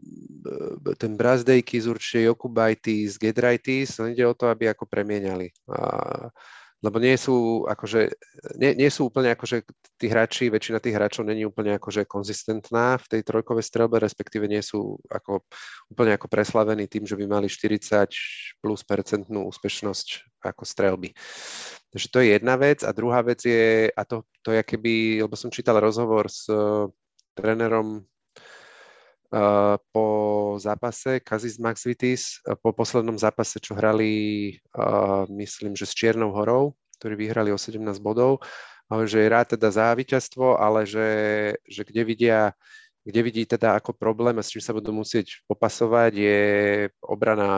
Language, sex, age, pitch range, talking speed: Slovak, male, 30-49, 105-120 Hz, 155 wpm